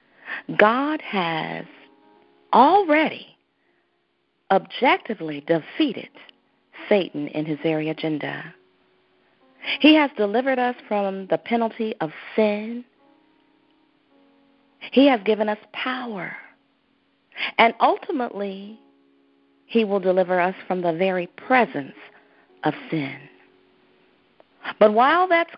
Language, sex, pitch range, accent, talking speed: English, female, 165-275 Hz, American, 90 wpm